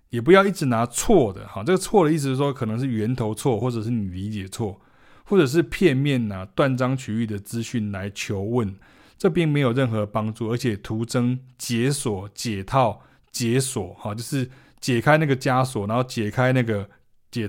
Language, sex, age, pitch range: Chinese, male, 20-39, 105-130 Hz